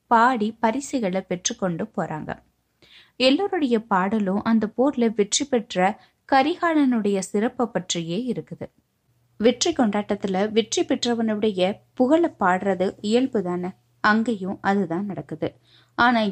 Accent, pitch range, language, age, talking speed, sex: native, 180-245 Hz, Tamil, 20-39, 95 wpm, female